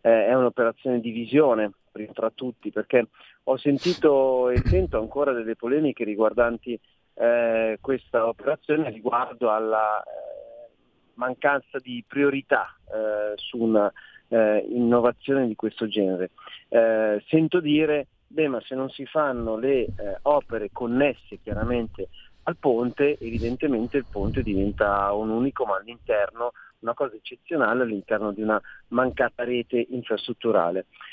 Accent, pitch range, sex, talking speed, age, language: native, 110-135 Hz, male, 125 wpm, 40-59, Italian